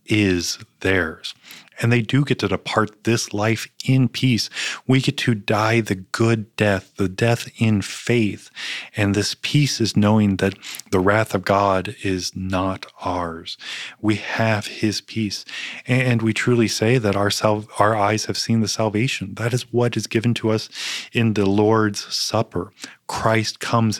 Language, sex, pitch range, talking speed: English, male, 100-120 Hz, 165 wpm